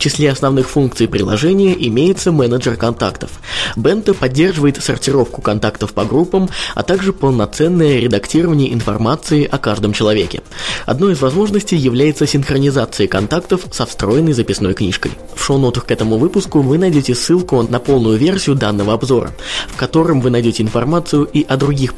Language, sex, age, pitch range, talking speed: Russian, male, 20-39, 110-155 Hz, 145 wpm